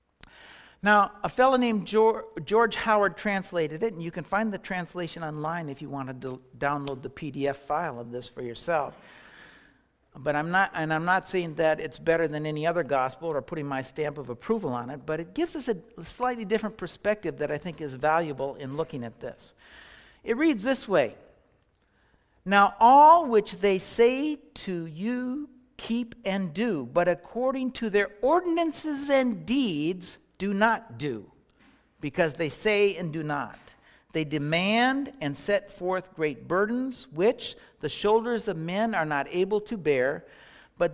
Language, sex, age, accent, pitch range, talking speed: English, male, 60-79, American, 155-240 Hz, 165 wpm